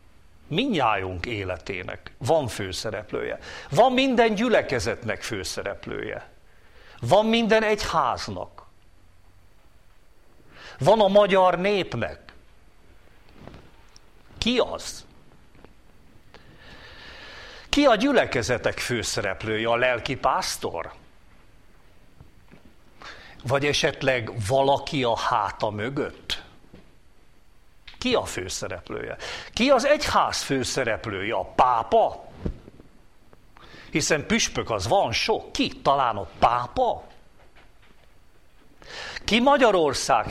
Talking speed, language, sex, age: 75 wpm, Hungarian, male, 60-79